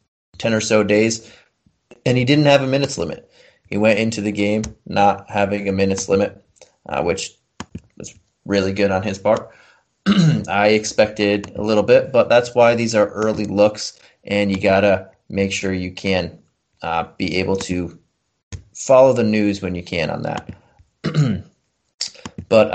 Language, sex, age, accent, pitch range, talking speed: English, male, 20-39, American, 95-110 Hz, 165 wpm